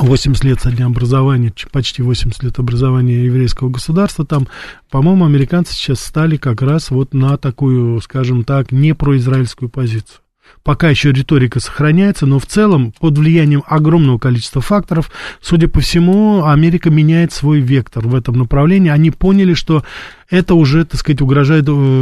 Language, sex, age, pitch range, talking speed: Russian, male, 20-39, 130-155 Hz, 155 wpm